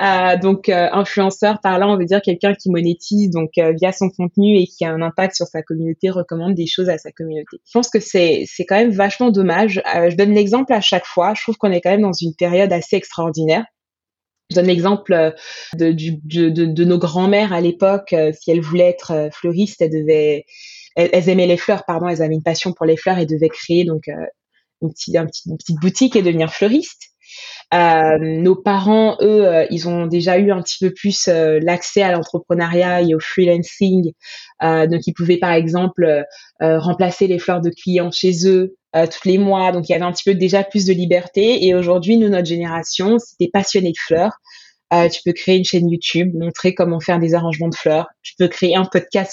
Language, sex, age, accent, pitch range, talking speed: French, female, 20-39, French, 170-195 Hz, 225 wpm